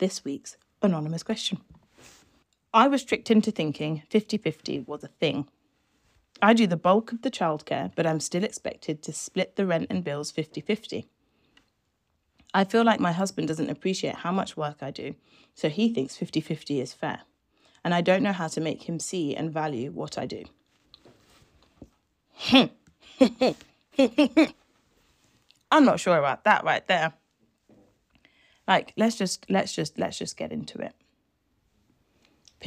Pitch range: 155-210 Hz